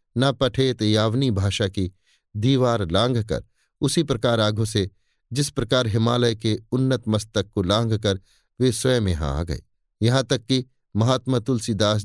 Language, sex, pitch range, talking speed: Hindi, male, 105-130 Hz, 145 wpm